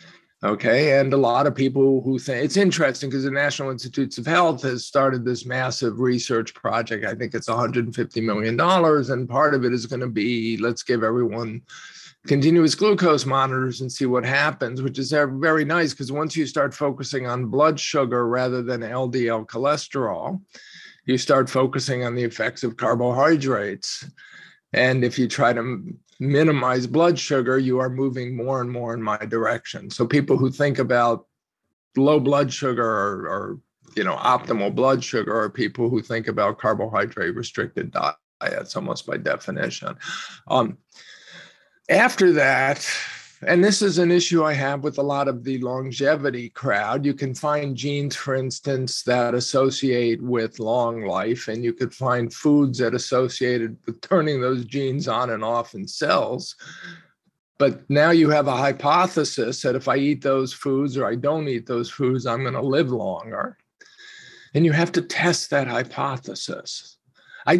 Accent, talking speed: American, 165 wpm